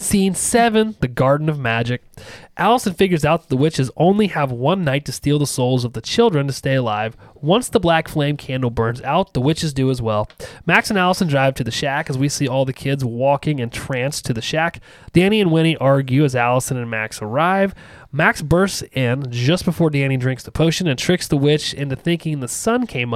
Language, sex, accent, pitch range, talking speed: English, male, American, 130-175 Hz, 220 wpm